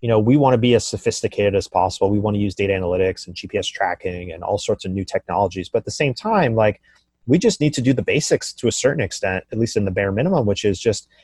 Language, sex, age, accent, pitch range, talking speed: Swedish, male, 30-49, American, 95-115 Hz, 270 wpm